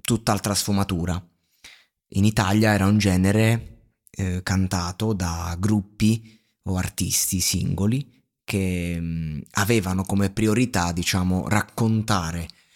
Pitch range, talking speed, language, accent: 95-110 Hz, 100 wpm, Italian, native